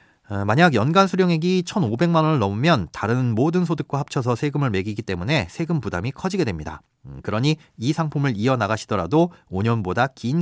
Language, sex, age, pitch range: Korean, male, 30-49, 110-160 Hz